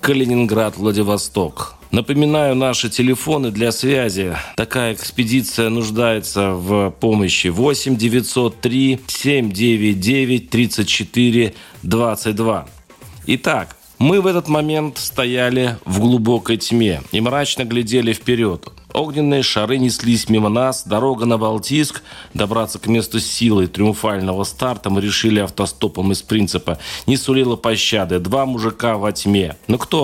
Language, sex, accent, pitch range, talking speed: Russian, male, native, 105-130 Hz, 105 wpm